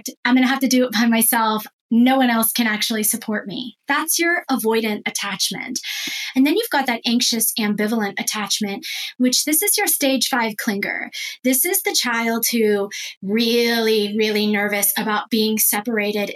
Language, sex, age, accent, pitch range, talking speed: English, female, 20-39, American, 210-265 Hz, 170 wpm